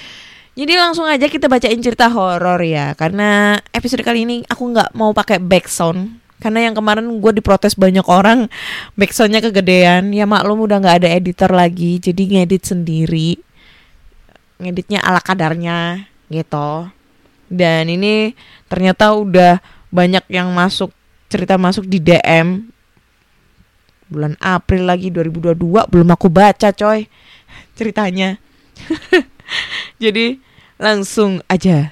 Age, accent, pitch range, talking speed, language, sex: 20-39, native, 175-215 Hz, 120 wpm, Indonesian, female